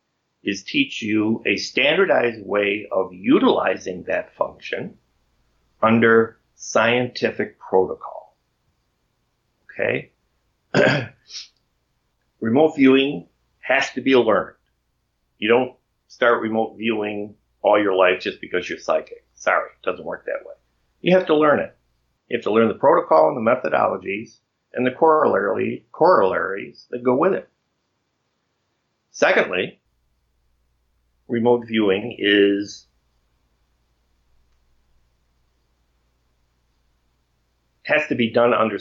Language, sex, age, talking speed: English, male, 50-69, 105 wpm